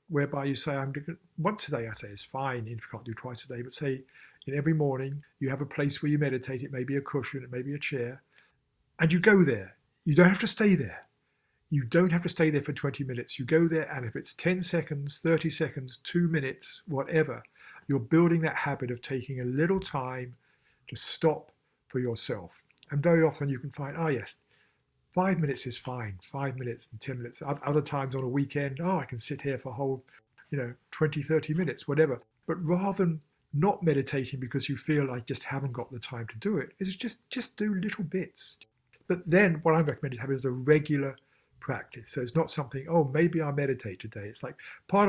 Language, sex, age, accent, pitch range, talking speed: English, male, 50-69, British, 130-160 Hz, 225 wpm